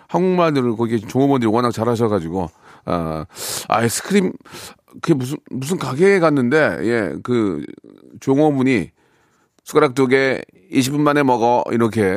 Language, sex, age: Korean, male, 40-59